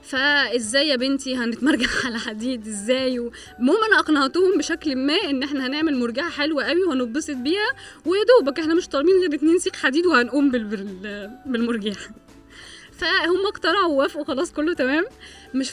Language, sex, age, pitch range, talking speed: Arabic, female, 20-39, 255-350 Hz, 135 wpm